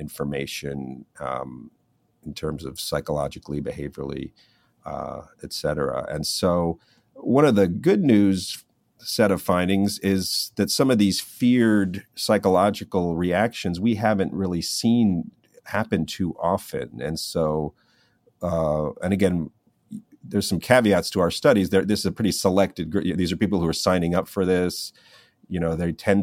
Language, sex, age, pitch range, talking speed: English, male, 40-59, 80-95 Hz, 150 wpm